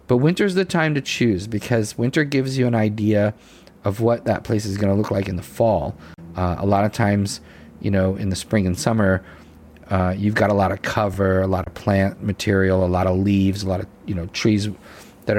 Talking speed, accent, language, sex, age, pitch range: 230 wpm, American, English, male, 40-59, 95-110 Hz